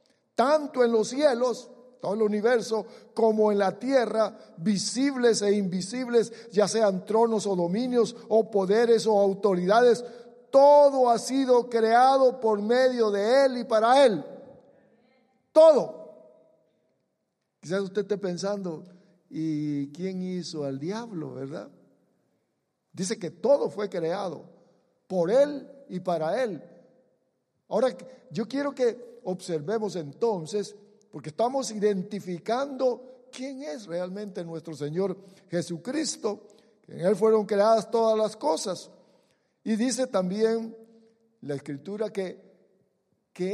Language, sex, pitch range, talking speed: English, male, 185-240 Hz, 115 wpm